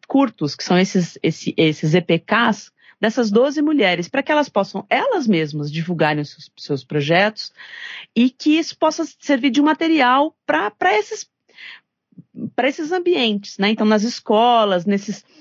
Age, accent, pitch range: 40-59, Brazilian, 180-235 Hz